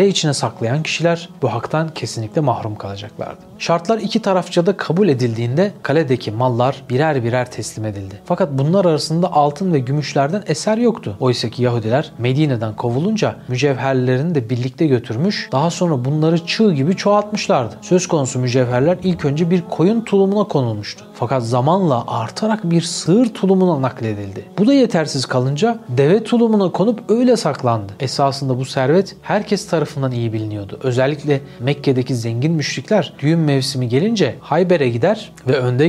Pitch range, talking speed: 130-180 Hz, 145 wpm